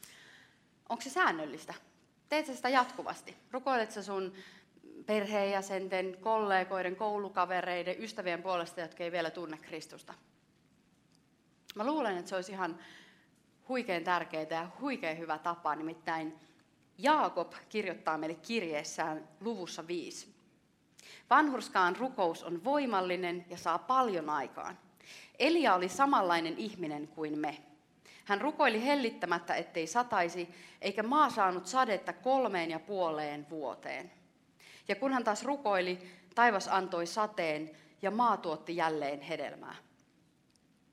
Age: 30-49